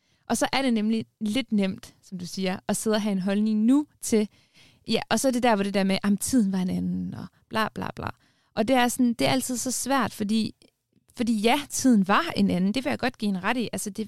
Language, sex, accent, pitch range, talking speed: Danish, female, native, 190-230 Hz, 270 wpm